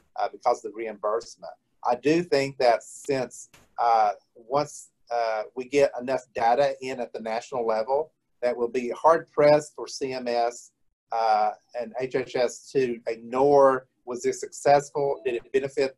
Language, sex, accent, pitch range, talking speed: English, male, American, 120-150 Hz, 150 wpm